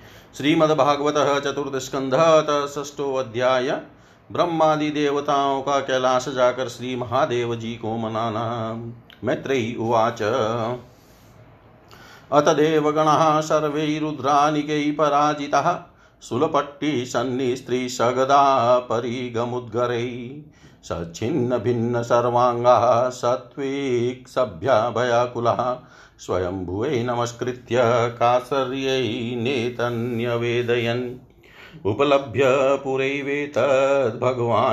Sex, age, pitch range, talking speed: male, 50-69, 120-135 Hz, 55 wpm